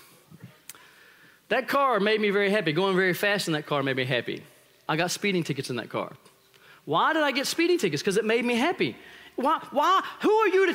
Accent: American